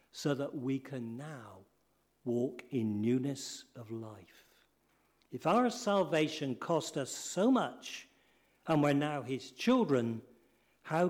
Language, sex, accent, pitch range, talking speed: English, male, British, 120-165 Hz, 125 wpm